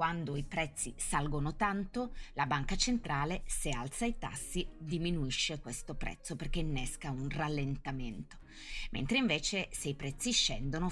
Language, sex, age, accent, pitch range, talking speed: Italian, female, 30-49, native, 135-185 Hz, 135 wpm